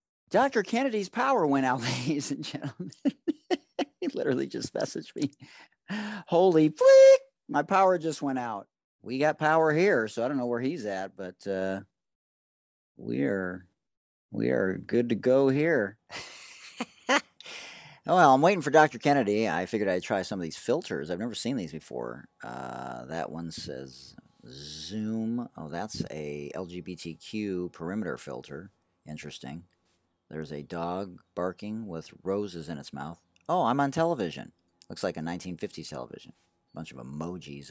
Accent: American